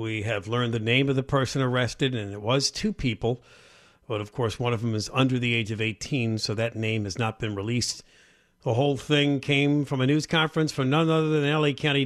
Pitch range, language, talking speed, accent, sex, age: 110-155 Hz, English, 235 wpm, American, male, 50-69